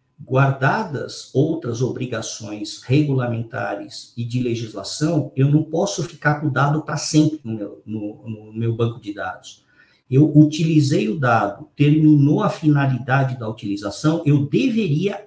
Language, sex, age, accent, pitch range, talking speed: Portuguese, male, 50-69, Brazilian, 135-195 Hz, 135 wpm